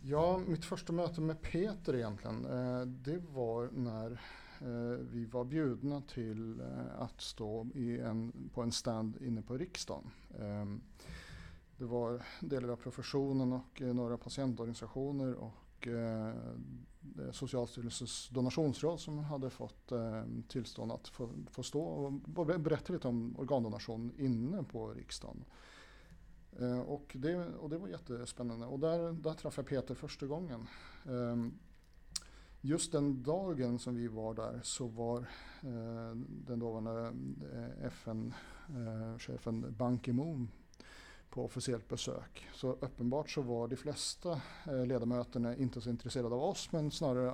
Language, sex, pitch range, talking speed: Swedish, male, 115-140 Hz, 125 wpm